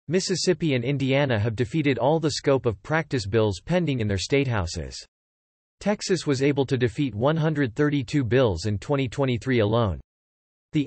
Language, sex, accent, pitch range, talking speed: English, male, American, 115-150 Hz, 150 wpm